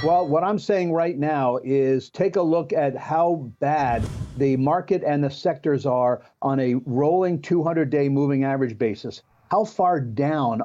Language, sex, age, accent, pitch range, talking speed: English, male, 50-69, American, 130-155 Hz, 165 wpm